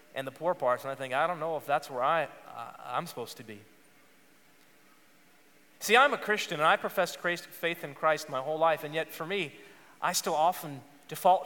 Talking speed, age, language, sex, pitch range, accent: 210 wpm, 30-49, English, male, 145-180 Hz, American